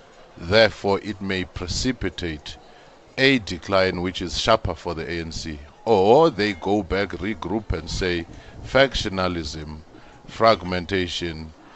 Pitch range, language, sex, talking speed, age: 85-105 Hz, English, male, 105 wpm, 50-69